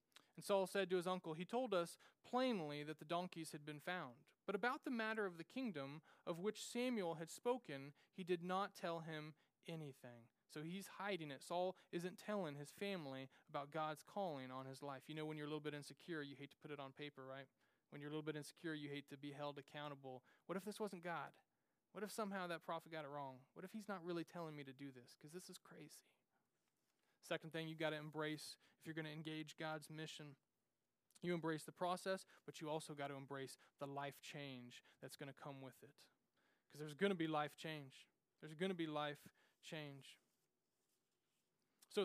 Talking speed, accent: 215 wpm, American